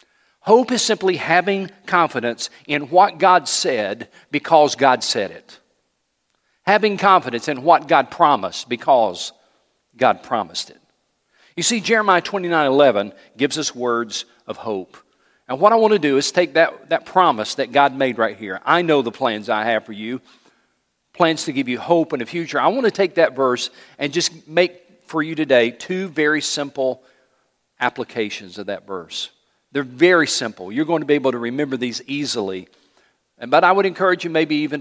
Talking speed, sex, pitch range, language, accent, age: 180 wpm, male, 120-175 Hz, English, American, 40-59